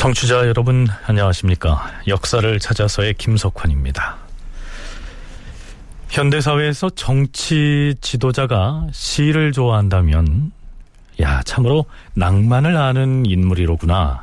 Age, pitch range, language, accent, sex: 40-59, 90-140 Hz, Korean, native, male